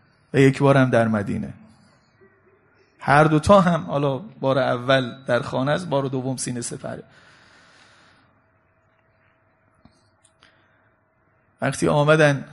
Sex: male